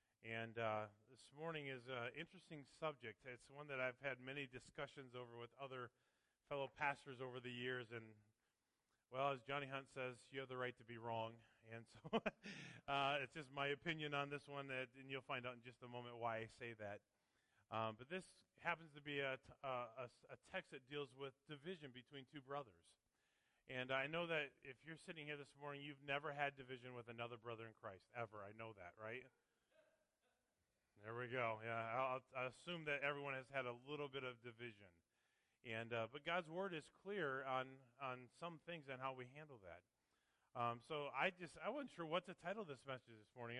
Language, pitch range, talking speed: English, 120-160 Hz, 205 wpm